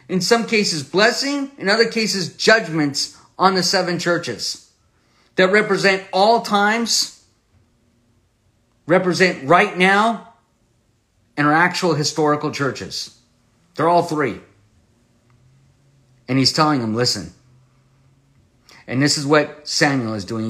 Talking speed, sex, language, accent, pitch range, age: 115 wpm, male, English, American, 120-160 Hz, 50-69